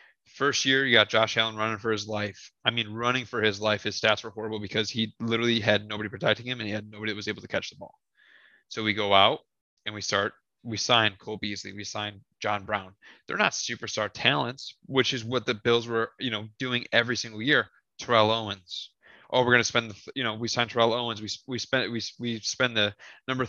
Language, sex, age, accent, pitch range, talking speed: English, male, 20-39, American, 110-125 Hz, 225 wpm